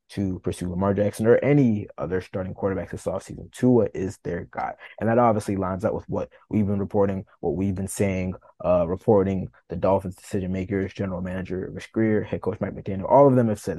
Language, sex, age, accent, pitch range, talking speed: English, male, 20-39, American, 95-110 Hz, 210 wpm